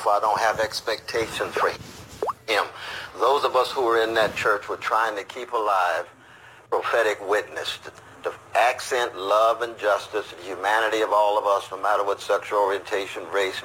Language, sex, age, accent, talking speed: English, male, 50-69, American, 165 wpm